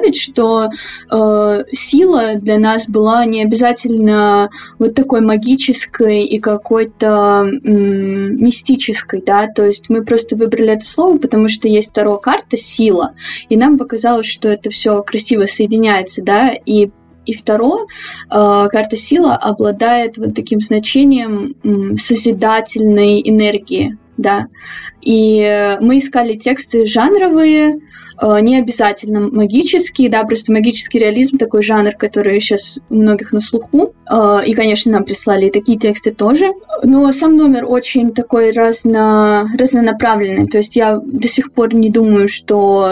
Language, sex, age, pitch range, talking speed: Russian, female, 20-39, 210-240 Hz, 135 wpm